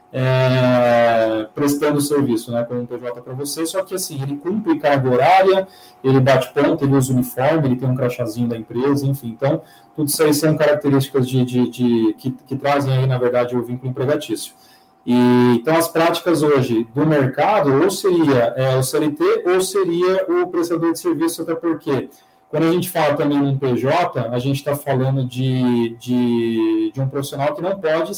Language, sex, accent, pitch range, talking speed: English, male, Brazilian, 130-160 Hz, 170 wpm